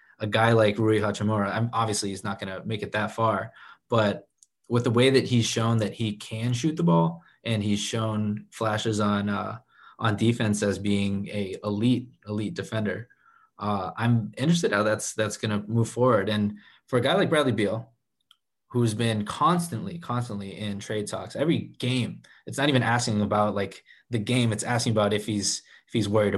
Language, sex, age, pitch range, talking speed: English, male, 20-39, 105-120 Hz, 185 wpm